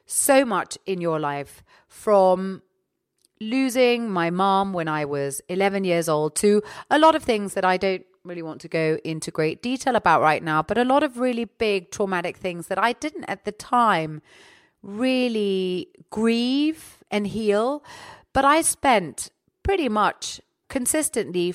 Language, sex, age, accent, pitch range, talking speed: English, female, 30-49, British, 185-235 Hz, 160 wpm